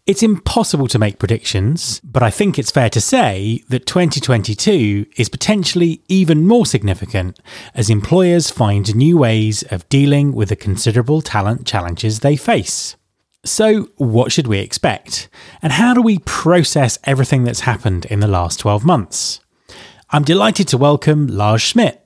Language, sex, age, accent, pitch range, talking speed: English, male, 30-49, British, 110-175 Hz, 155 wpm